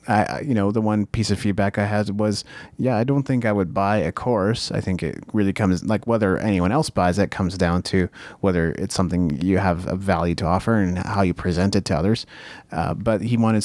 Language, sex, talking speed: English, male, 240 wpm